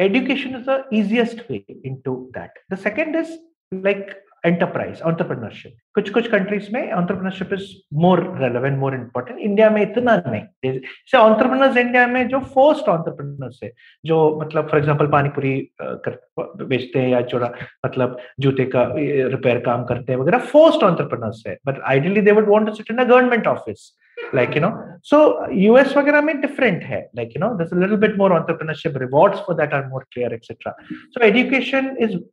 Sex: male